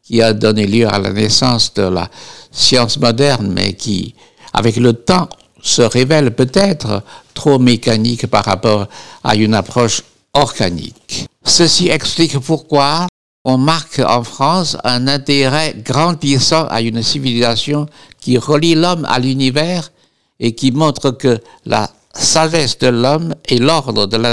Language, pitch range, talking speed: French, 115-140 Hz, 140 wpm